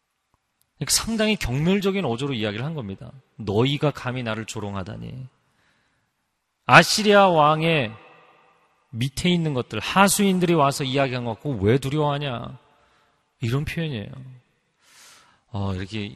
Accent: native